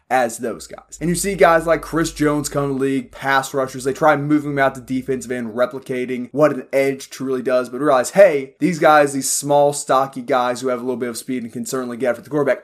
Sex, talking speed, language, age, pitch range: male, 255 wpm, English, 20-39, 125-150 Hz